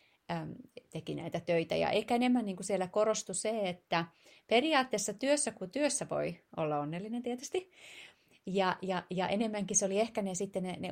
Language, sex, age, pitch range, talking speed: Finnish, female, 30-49, 160-205 Hz, 150 wpm